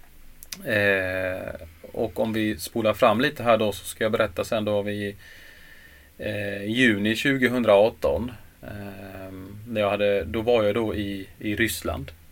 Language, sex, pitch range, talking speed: Swedish, male, 90-110 Hz, 150 wpm